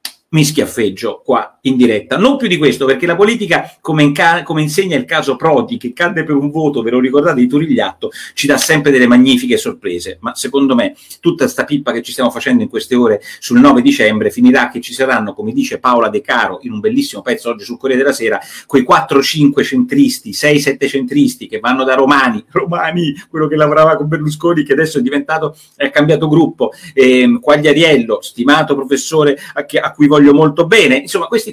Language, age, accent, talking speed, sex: Italian, 40-59, native, 200 wpm, male